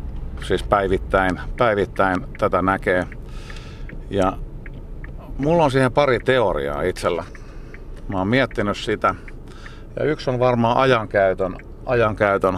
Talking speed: 105 wpm